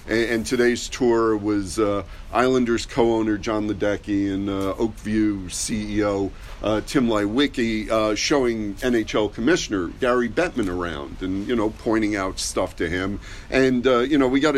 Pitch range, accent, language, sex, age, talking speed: 105-125 Hz, American, English, male, 50-69, 150 wpm